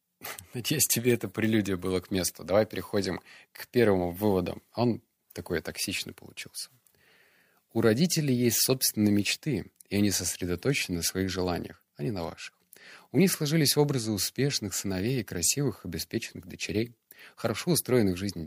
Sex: male